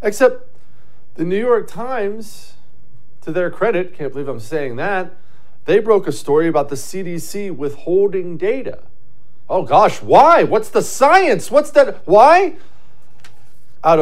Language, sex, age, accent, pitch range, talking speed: English, male, 40-59, American, 145-235 Hz, 135 wpm